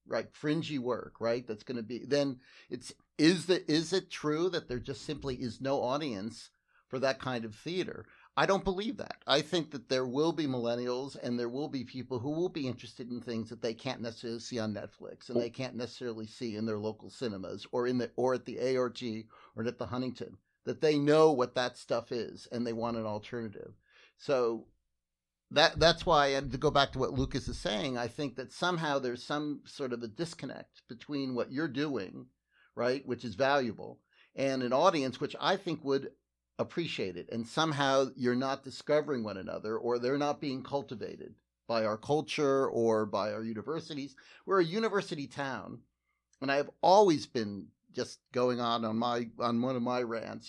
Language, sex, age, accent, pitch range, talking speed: English, male, 50-69, American, 120-145 Hz, 195 wpm